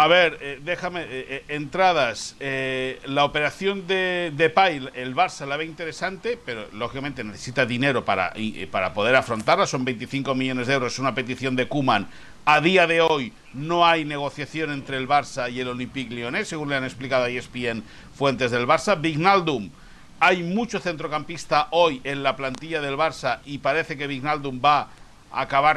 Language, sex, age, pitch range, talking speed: Spanish, male, 60-79, 130-165 Hz, 180 wpm